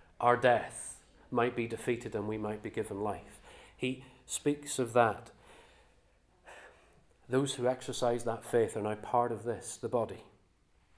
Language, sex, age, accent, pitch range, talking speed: English, male, 40-59, British, 110-130 Hz, 150 wpm